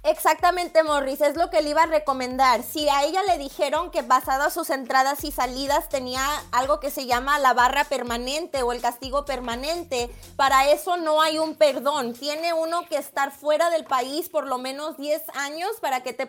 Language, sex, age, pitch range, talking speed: Spanish, female, 20-39, 280-330 Hz, 205 wpm